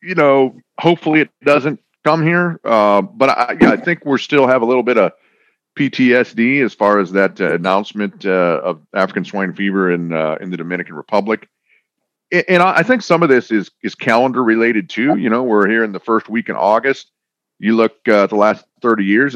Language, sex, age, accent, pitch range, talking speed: English, male, 40-59, American, 100-135 Hz, 210 wpm